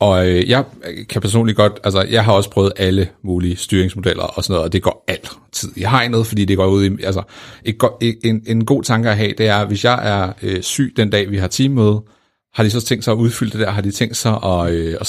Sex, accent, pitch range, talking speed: male, native, 95-110 Hz, 250 wpm